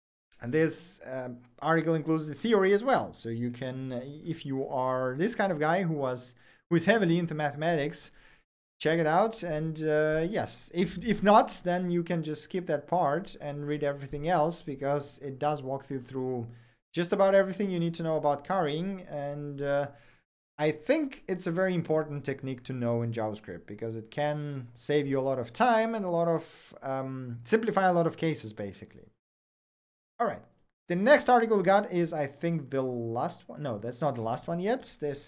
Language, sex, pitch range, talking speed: English, male, 135-175 Hz, 195 wpm